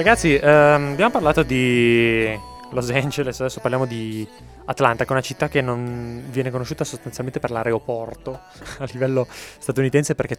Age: 20-39